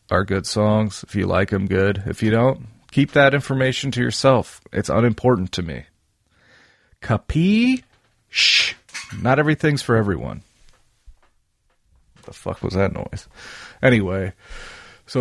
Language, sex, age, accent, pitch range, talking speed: English, male, 40-59, American, 95-115 Hz, 130 wpm